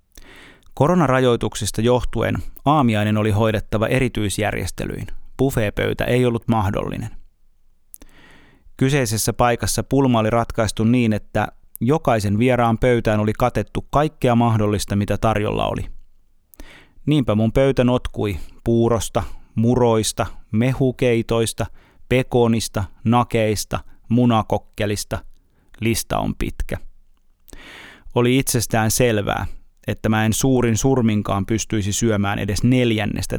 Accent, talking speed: native, 95 wpm